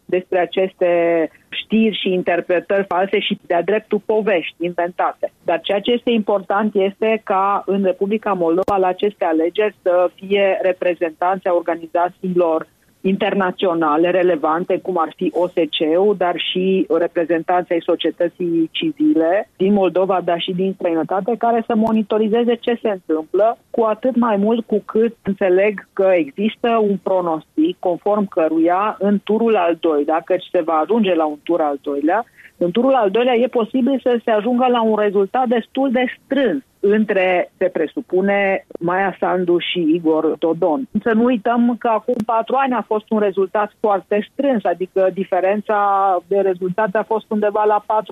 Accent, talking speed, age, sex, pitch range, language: native, 150 wpm, 30-49, female, 180-220 Hz, Romanian